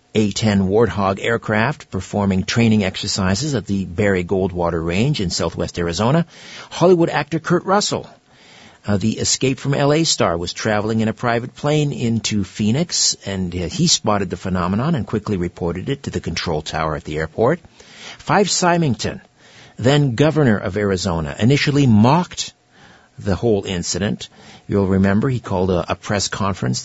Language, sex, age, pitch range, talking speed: English, male, 60-79, 95-130 Hz, 150 wpm